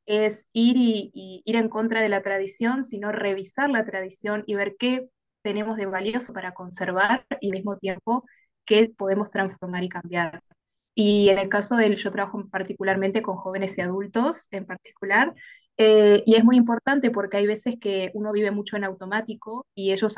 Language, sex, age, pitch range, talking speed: Spanish, female, 20-39, 195-220 Hz, 180 wpm